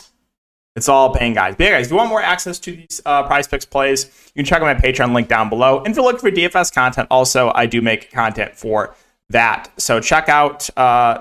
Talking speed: 240 wpm